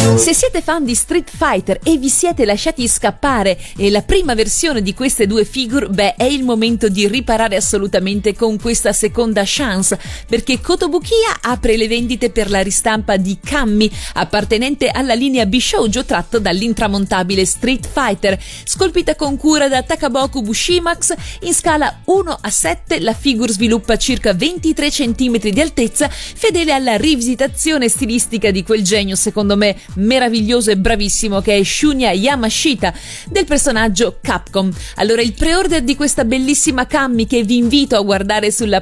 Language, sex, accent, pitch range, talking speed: Italian, female, native, 210-285 Hz, 155 wpm